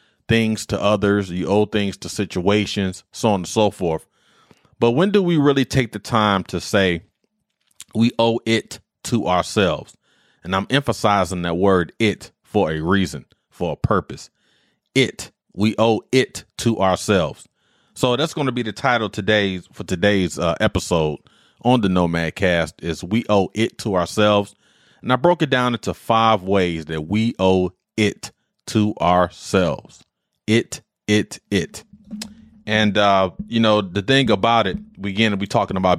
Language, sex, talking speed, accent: English, male, 165 wpm, American